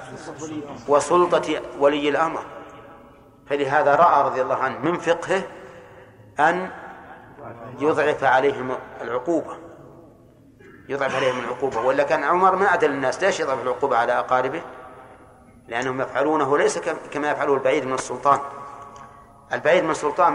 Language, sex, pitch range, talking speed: Arabic, male, 130-155 Hz, 115 wpm